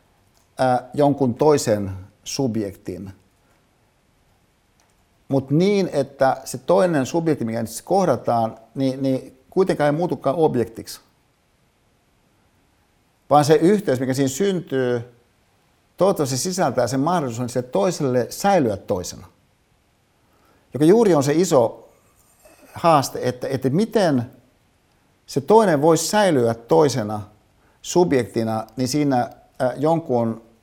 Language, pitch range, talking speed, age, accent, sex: Finnish, 115-160 Hz, 95 wpm, 60-79, native, male